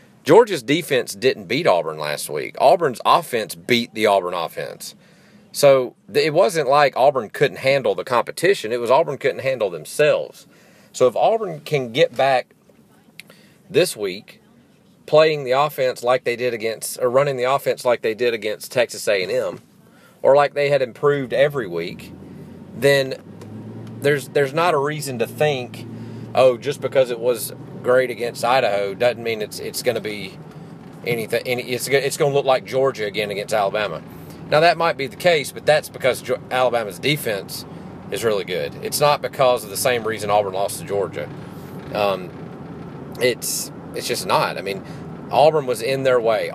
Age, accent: 40-59, American